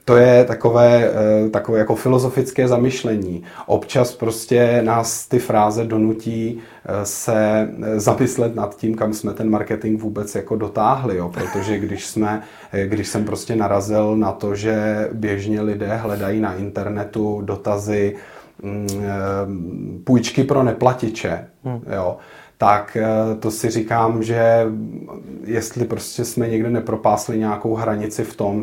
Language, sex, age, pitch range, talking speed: Czech, male, 30-49, 105-115 Hz, 125 wpm